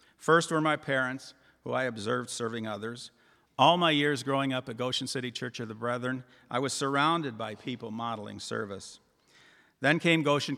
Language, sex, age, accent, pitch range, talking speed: English, male, 50-69, American, 120-145 Hz, 175 wpm